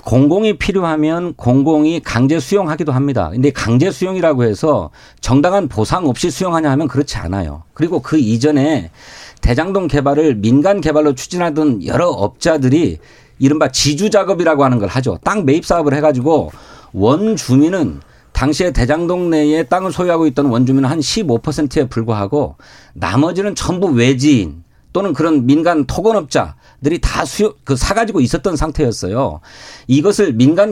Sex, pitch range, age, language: male, 135-180 Hz, 40-59, Korean